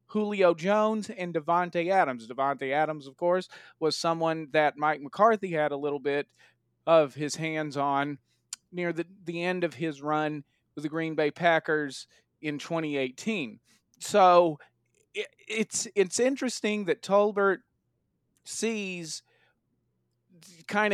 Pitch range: 155-185 Hz